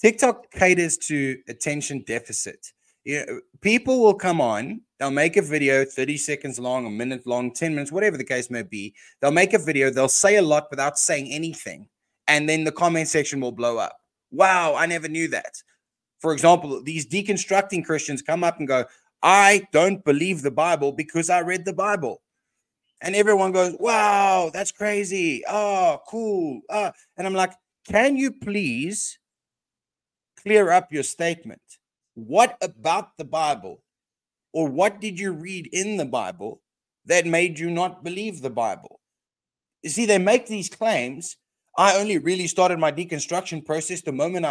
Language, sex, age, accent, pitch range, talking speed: English, male, 20-39, Australian, 150-200 Hz, 165 wpm